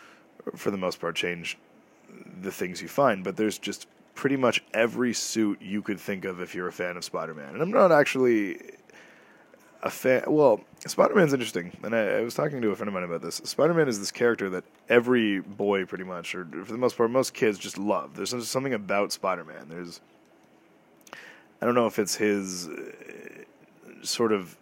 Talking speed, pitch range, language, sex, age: 190 wpm, 90-115 Hz, English, male, 20-39